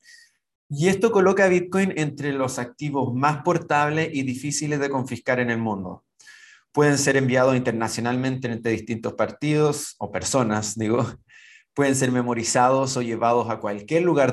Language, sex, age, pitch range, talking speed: English, male, 30-49, 115-150 Hz, 145 wpm